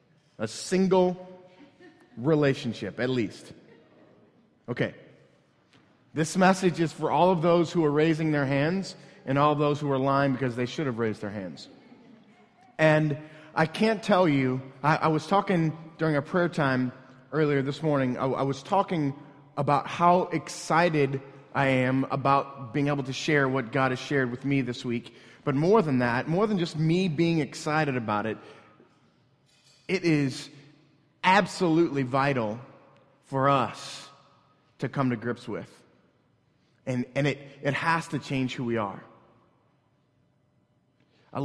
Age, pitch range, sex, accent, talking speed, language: 30-49, 130-155 Hz, male, American, 150 wpm, English